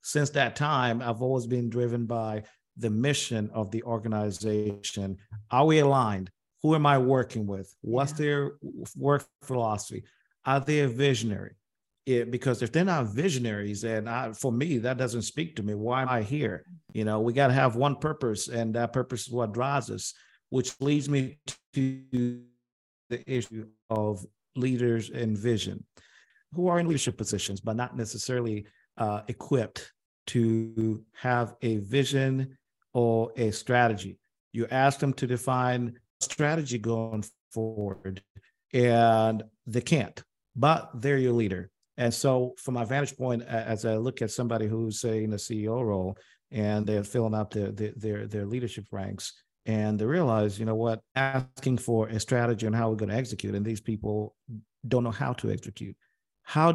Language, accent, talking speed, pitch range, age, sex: English, American, 160 wpm, 110-130 Hz, 50-69, male